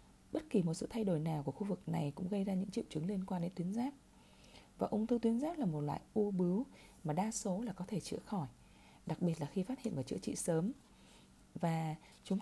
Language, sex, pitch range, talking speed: Vietnamese, female, 170-220 Hz, 250 wpm